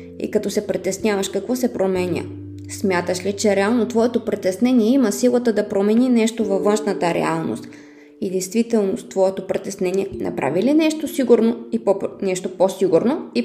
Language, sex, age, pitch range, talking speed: Bulgarian, female, 20-39, 175-230 Hz, 150 wpm